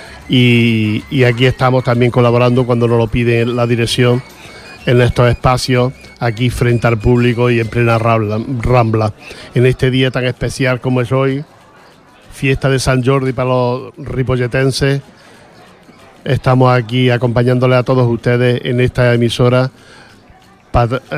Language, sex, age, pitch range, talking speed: English, male, 50-69, 120-130 Hz, 135 wpm